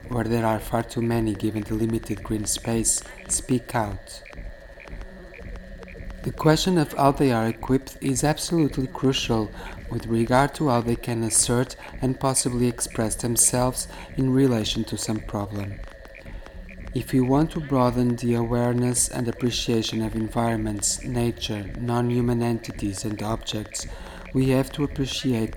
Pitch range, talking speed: 110-130 Hz, 140 wpm